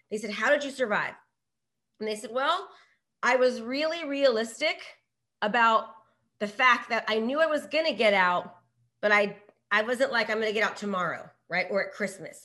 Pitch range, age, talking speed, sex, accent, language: 210-270 Hz, 30-49, 190 wpm, female, American, English